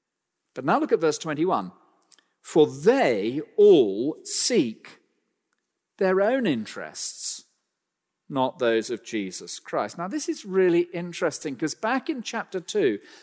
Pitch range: 155-220 Hz